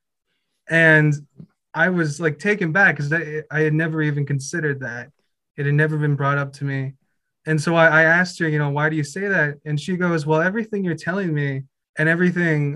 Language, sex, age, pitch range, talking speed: English, male, 20-39, 140-165 Hz, 200 wpm